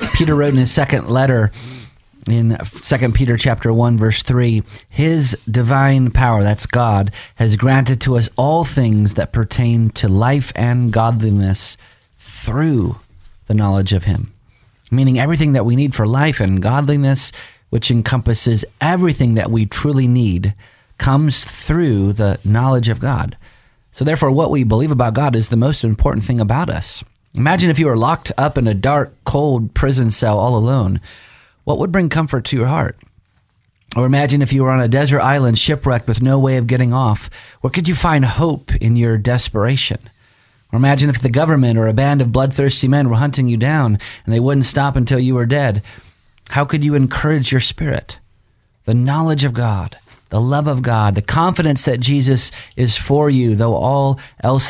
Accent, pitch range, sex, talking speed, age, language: American, 110-135 Hz, male, 180 wpm, 30-49, English